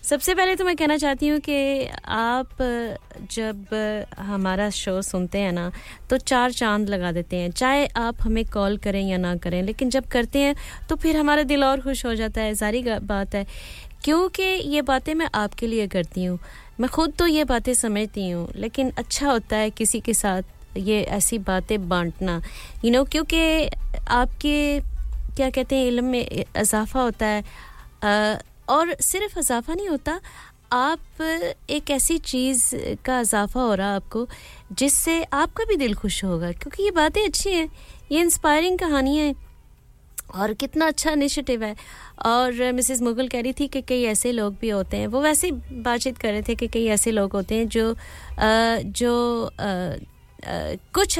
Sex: female